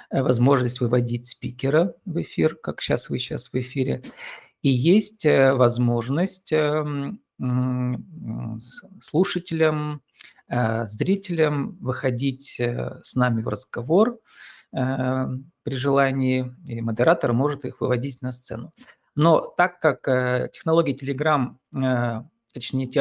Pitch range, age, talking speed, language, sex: 120-150 Hz, 40-59, 95 wpm, Russian, male